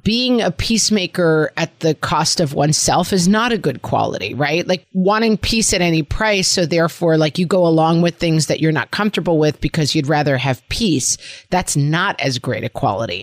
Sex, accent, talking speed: female, American, 200 wpm